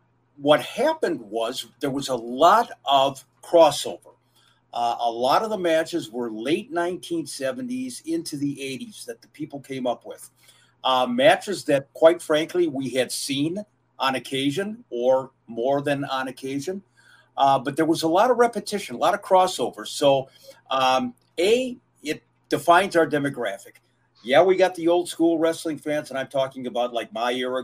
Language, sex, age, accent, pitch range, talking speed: English, male, 50-69, American, 125-170 Hz, 165 wpm